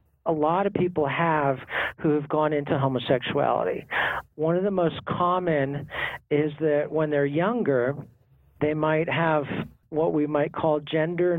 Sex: male